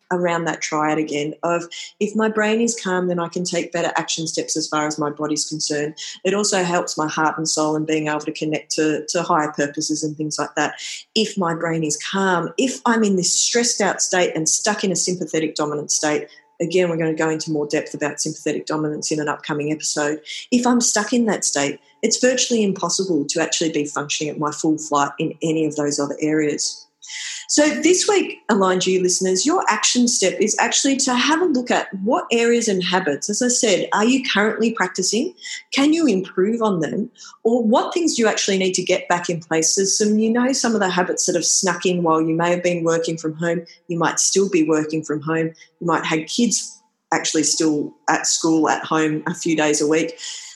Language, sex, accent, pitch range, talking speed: English, female, Australian, 155-215 Hz, 220 wpm